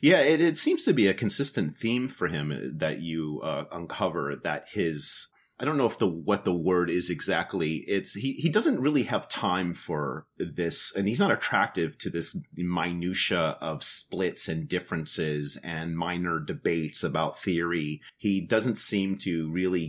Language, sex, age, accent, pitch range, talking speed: English, male, 30-49, American, 80-100 Hz, 170 wpm